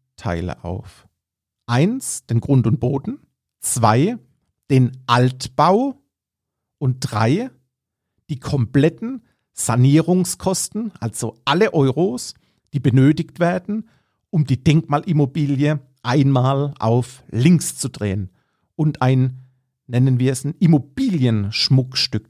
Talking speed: 95 wpm